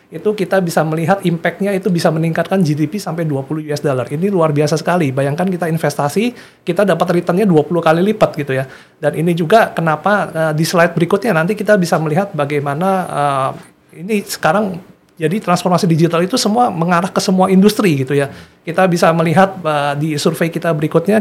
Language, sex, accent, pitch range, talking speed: Indonesian, male, native, 150-185 Hz, 180 wpm